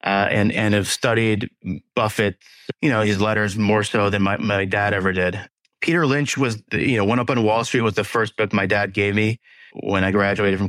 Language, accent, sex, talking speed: English, American, male, 230 wpm